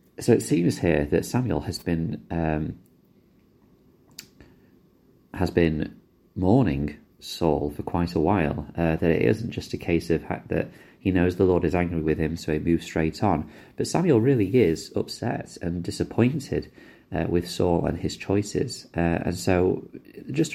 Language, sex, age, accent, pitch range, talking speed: English, male, 30-49, British, 80-95 Hz, 165 wpm